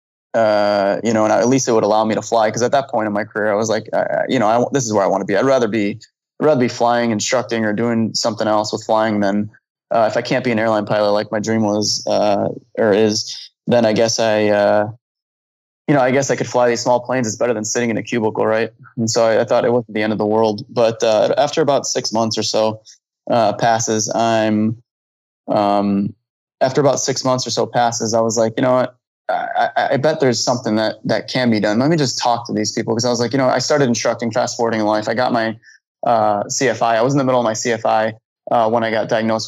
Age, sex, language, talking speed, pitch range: 20-39, male, English, 260 wpm, 105-120 Hz